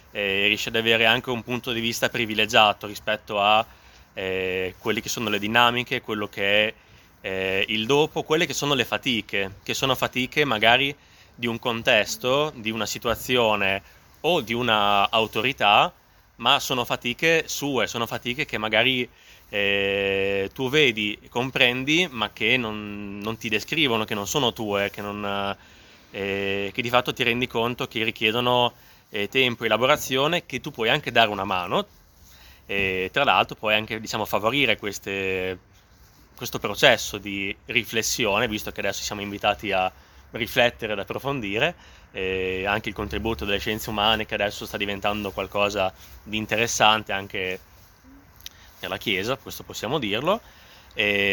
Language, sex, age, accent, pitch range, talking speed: English, male, 20-39, Italian, 100-120 Hz, 150 wpm